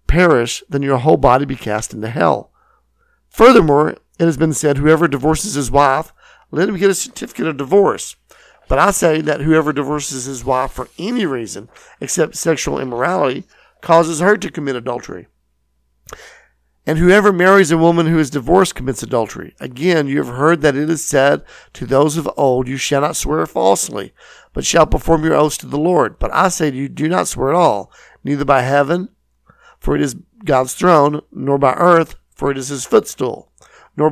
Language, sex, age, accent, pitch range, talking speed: English, male, 50-69, American, 135-160 Hz, 185 wpm